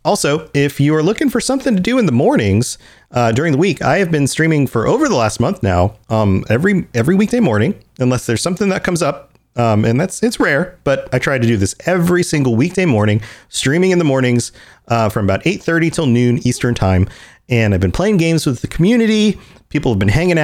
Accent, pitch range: American, 105-150 Hz